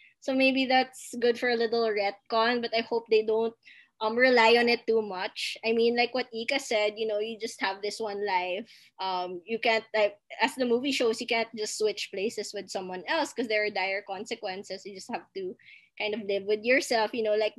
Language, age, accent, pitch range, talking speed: English, 20-39, Filipino, 210-265 Hz, 225 wpm